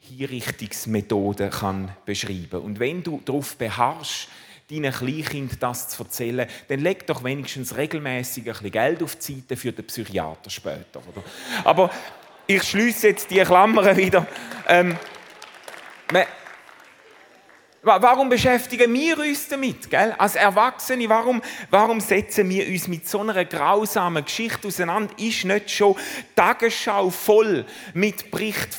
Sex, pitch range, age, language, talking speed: male, 135-210 Hz, 30-49, German, 135 wpm